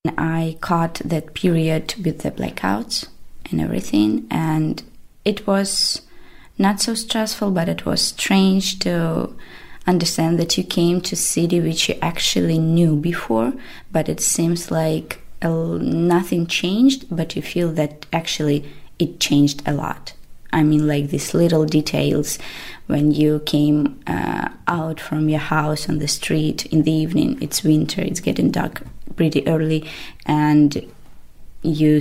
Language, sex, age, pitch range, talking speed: Danish, female, 20-39, 150-180 Hz, 140 wpm